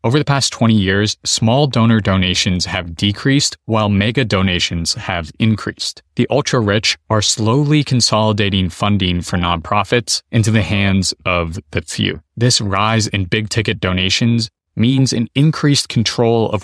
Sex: male